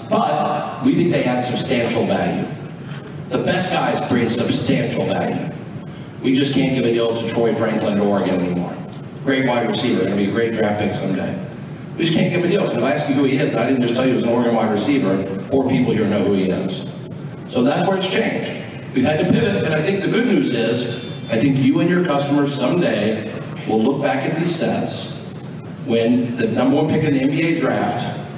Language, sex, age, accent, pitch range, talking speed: English, male, 50-69, American, 115-155 Hz, 225 wpm